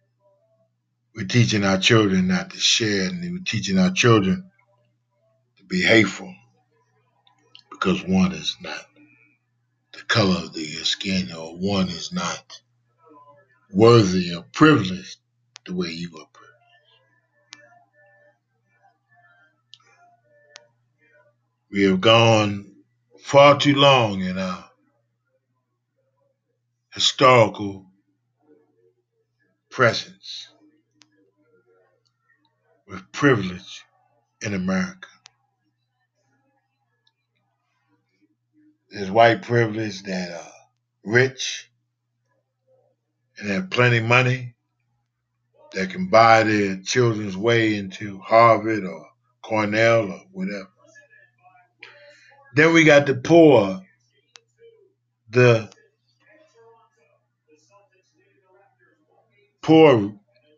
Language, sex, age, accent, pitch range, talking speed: English, male, 50-69, American, 105-140 Hz, 80 wpm